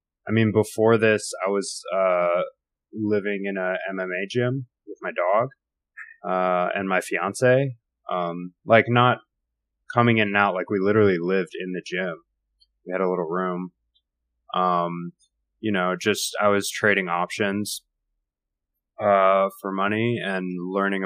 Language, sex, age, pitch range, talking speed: English, male, 20-39, 90-110 Hz, 145 wpm